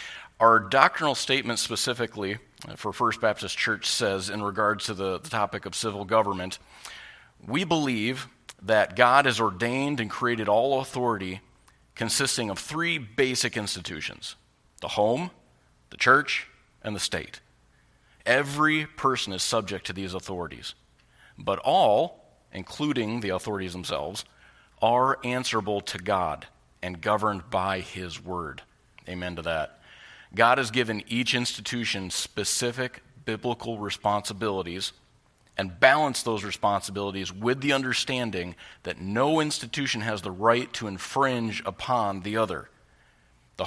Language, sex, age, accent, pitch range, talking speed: English, male, 40-59, American, 95-125 Hz, 125 wpm